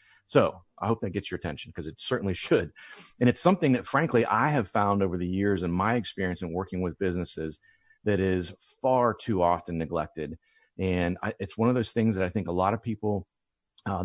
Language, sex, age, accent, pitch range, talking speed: English, male, 40-59, American, 90-115 Hz, 210 wpm